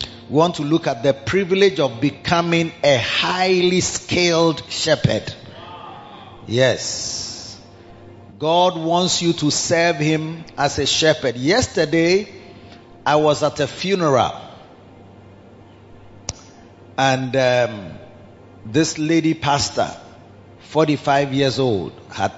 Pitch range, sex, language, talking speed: 115-145 Hz, male, English, 100 wpm